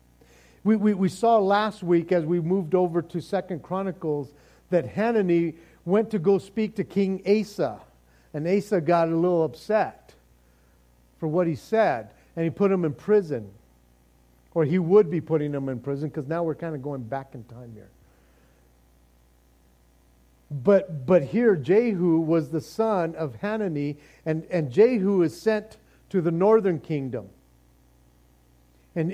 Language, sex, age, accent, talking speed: English, male, 50-69, American, 155 wpm